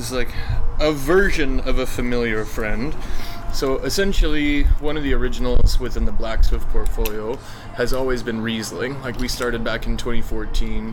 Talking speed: 150 wpm